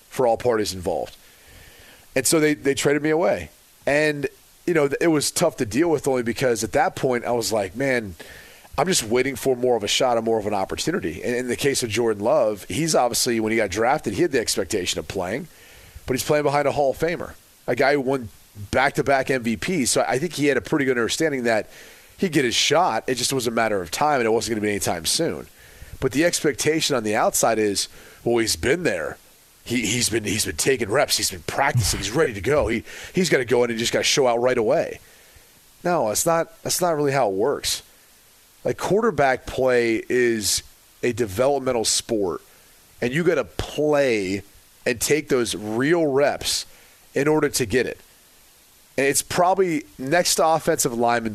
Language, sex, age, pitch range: English, male, 30-49, 110-145 Hz